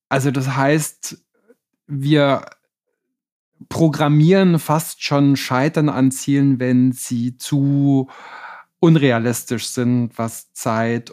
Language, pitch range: German, 120-145 Hz